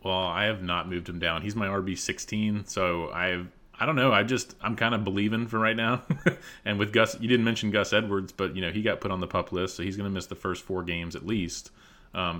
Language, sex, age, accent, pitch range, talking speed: English, male, 30-49, American, 90-105 Hz, 265 wpm